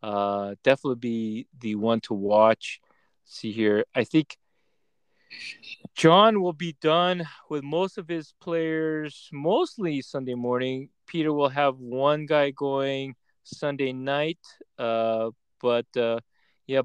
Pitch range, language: 125-175 Hz, English